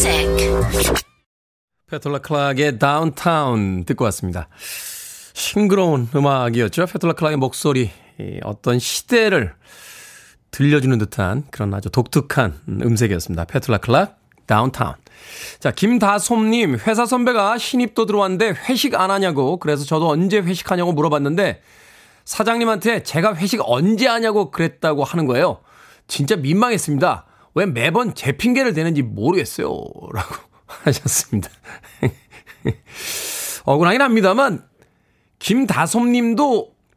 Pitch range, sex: 140-215 Hz, male